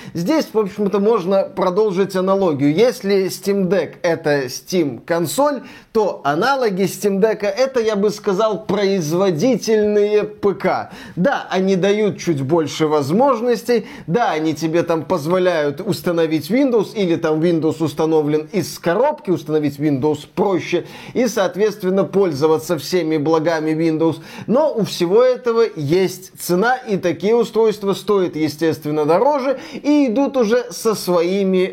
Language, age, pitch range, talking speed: Russian, 20-39, 170-220 Hz, 125 wpm